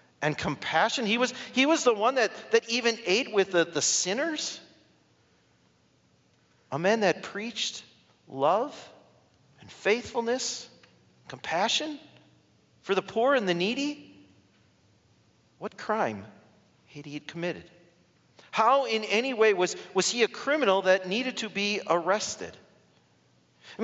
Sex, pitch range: male, 160-220 Hz